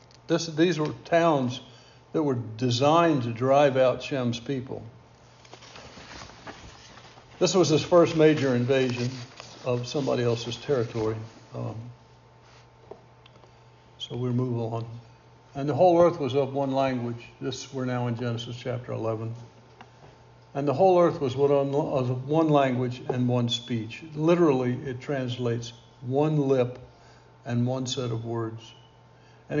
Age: 60-79